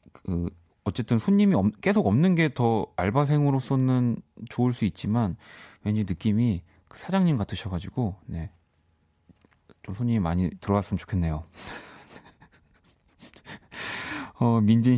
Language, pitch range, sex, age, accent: Korean, 95-140 Hz, male, 30-49, native